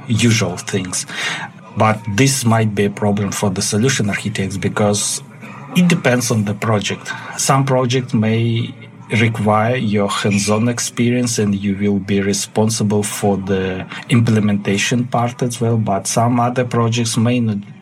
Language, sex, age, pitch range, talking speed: English, male, 30-49, 100-110 Hz, 140 wpm